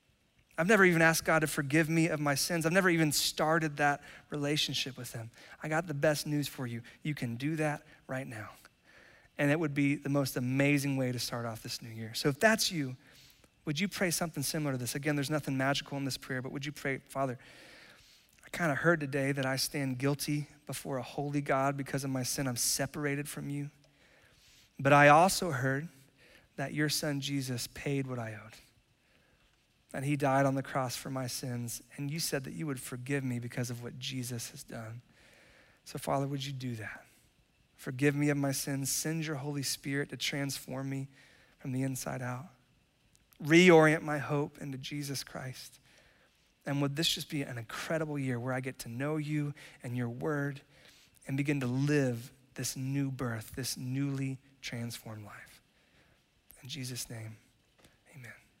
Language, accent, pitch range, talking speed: English, American, 130-150 Hz, 185 wpm